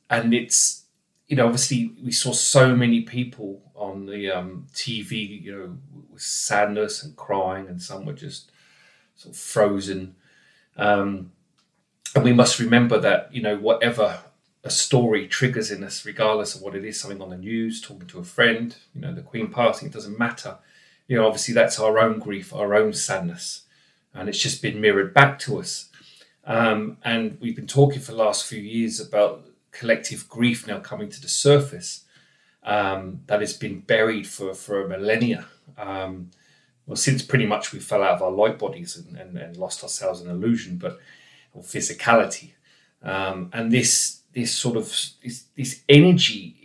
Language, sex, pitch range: English, male, 105-135 Hz